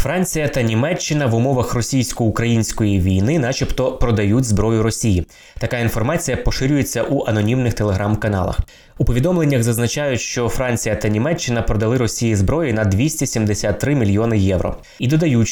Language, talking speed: Ukrainian, 130 wpm